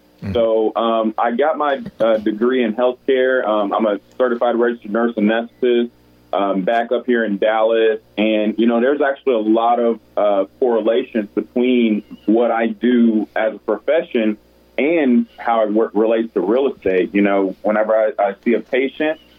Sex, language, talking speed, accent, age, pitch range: male, English, 175 wpm, American, 30-49, 100-120 Hz